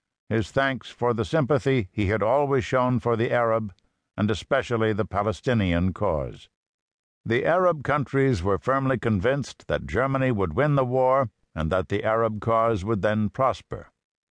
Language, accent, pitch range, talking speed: English, American, 105-130 Hz, 155 wpm